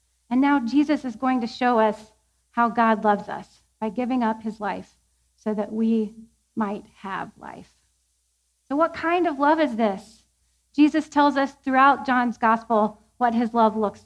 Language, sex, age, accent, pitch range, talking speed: English, female, 30-49, American, 225-280 Hz, 170 wpm